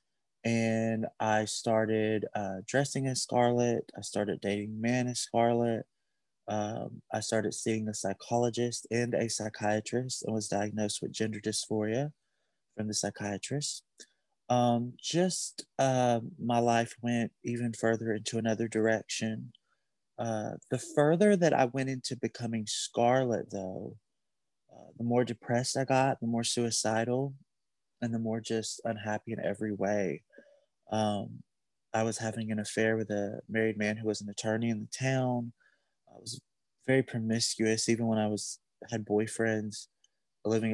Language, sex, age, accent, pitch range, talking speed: English, male, 20-39, American, 105-120 Hz, 145 wpm